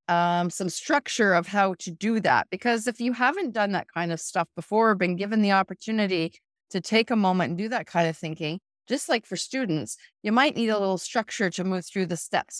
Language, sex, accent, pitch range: English, female, American, 160-215 Hz